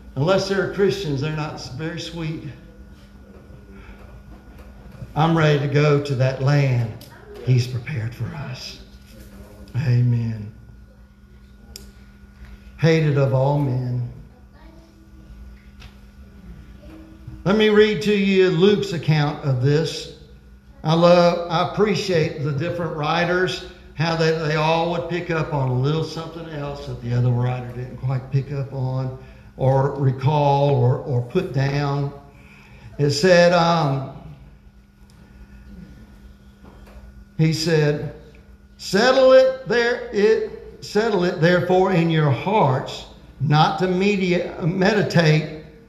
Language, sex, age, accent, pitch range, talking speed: English, male, 60-79, American, 120-170 Hz, 110 wpm